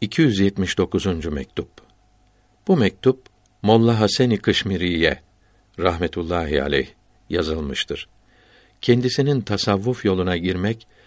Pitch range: 90-110 Hz